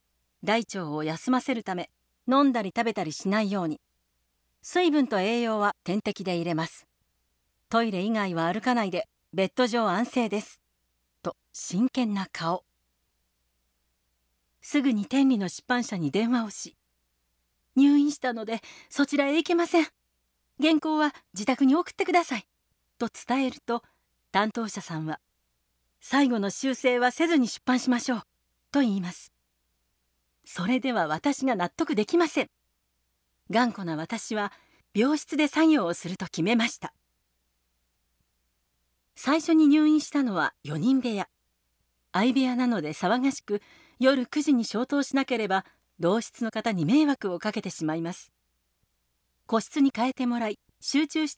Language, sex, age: Japanese, female, 40-59